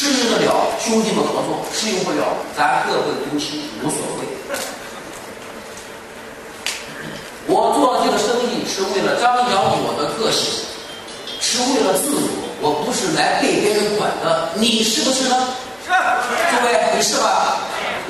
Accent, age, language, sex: native, 40-59, Chinese, male